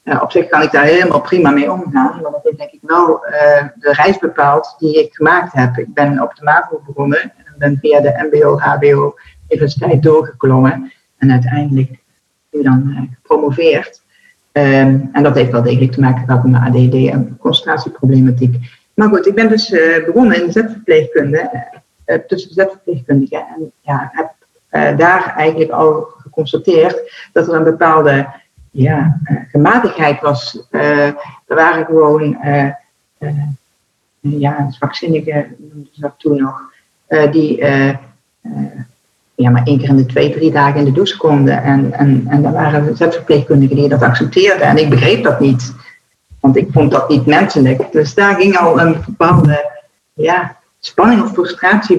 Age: 50-69